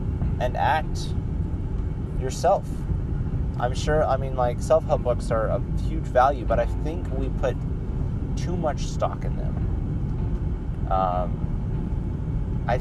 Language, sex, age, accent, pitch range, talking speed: English, male, 30-49, American, 80-105 Hz, 120 wpm